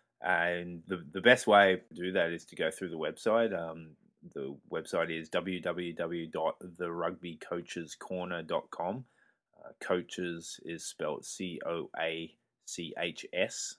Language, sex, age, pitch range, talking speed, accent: English, male, 20-39, 80-90 Hz, 105 wpm, Australian